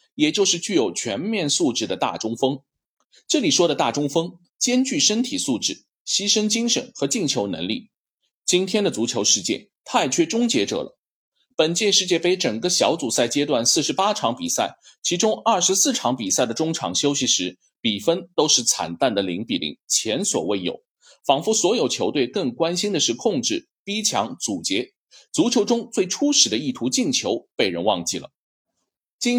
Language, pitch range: Chinese, 150-255 Hz